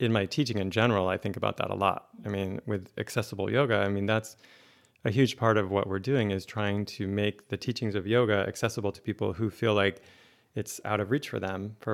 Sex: male